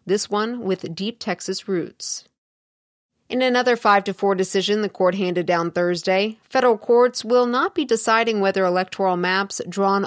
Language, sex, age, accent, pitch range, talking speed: English, female, 30-49, American, 180-205 Hz, 160 wpm